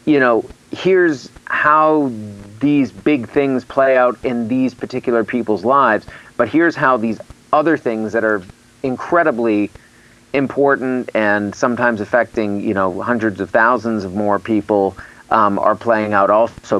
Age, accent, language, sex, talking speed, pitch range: 40-59, American, English, male, 145 wpm, 110-140 Hz